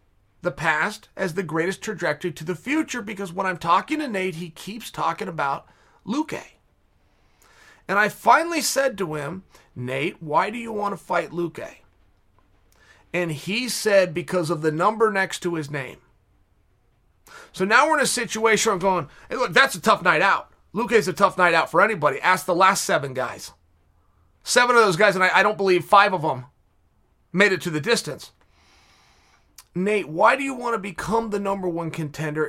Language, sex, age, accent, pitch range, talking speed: English, male, 30-49, American, 145-215 Hz, 185 wpm